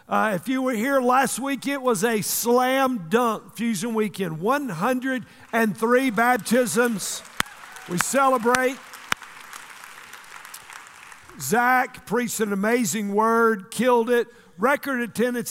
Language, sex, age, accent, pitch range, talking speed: English, male, 50-69, American, 205-245 Hz, 105 wpm